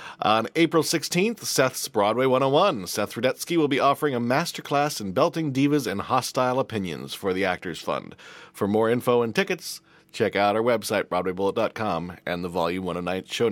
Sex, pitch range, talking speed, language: male, 110-155 Hz, 170 wpm, English